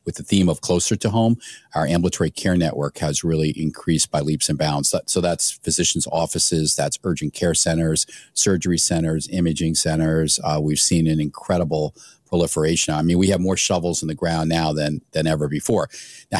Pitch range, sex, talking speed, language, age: 80-90 Hz, male, 185 wpm, English, 40-59